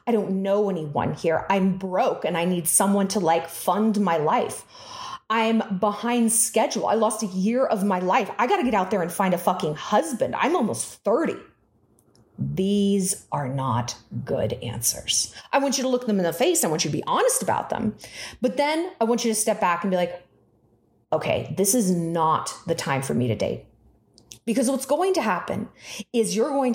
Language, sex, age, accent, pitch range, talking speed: English, female, 30-49, American, 175-290 Hz, 205 wpm